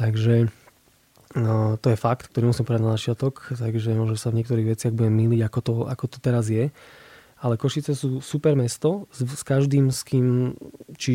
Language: Slovak